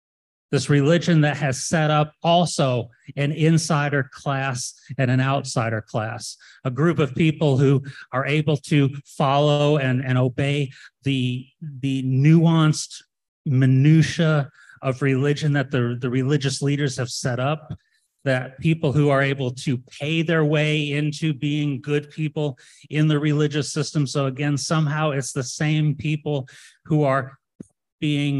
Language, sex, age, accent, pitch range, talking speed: English, male, 30-49, American, 125-145 Hz, 140 wpm